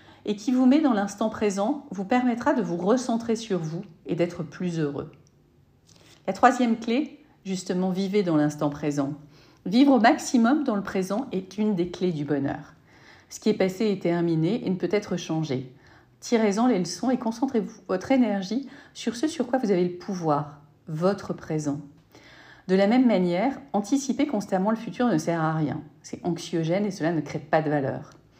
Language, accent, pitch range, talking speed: French, French, 170-220 Hz, 185 wpm